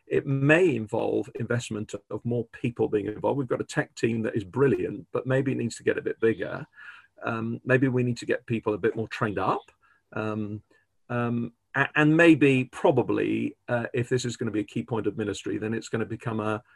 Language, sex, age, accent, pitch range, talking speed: English, male, 40-59, British, 110-135 Hz, 220 wpm